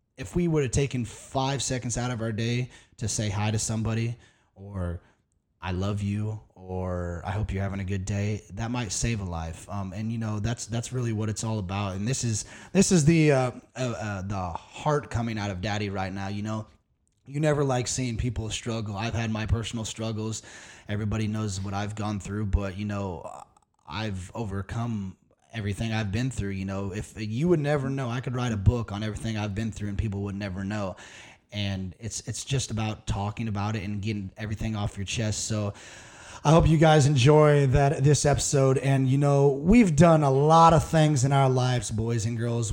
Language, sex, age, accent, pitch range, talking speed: English, male, 20-39, American, 105-135 Hz, 210 wpm